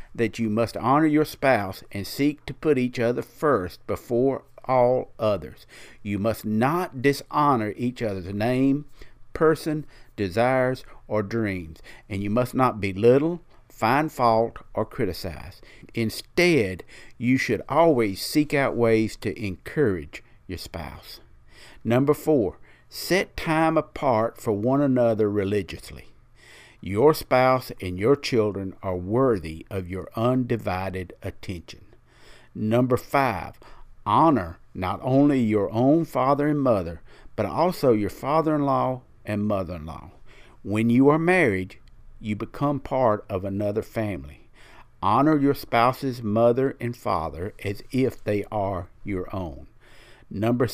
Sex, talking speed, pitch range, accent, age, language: male, 125 wpm, 100-135 Hz, American, 50-69, English